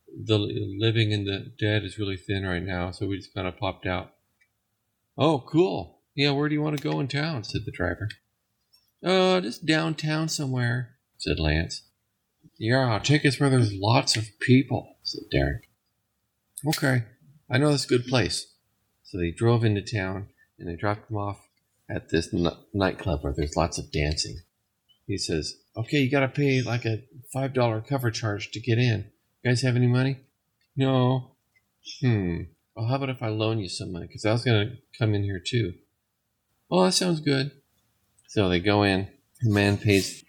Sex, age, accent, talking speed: male, 50-69, American, 185 wpm